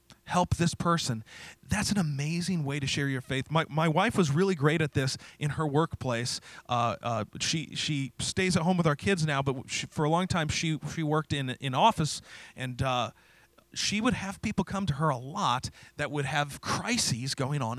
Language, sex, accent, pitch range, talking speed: English, male, American, 130-170 Hz, 210 wpm